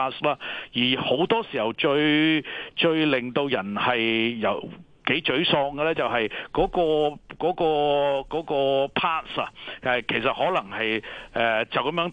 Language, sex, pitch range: Chinese, male, 120-155 Hz